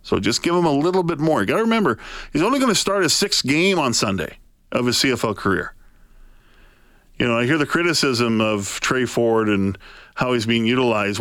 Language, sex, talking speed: English, male, 215 wpm